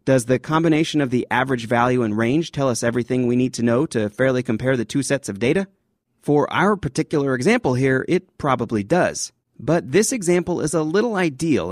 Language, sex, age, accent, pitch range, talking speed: English, male, 30-49, American, 120-165 Hz, 200 wpm